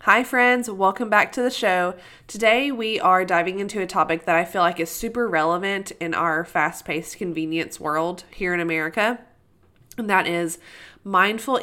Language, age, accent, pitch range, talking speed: English, 20-39, American, 170-215 Hz, 170 wpm